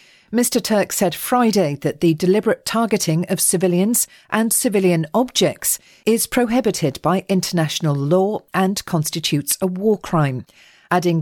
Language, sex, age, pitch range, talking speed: English, female, 40-59, 165-220 Hz, 130 wpm